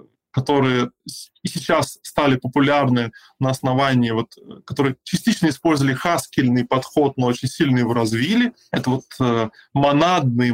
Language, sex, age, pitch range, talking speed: Russian, male, 20-39, 125-155 Hz, 100 wpm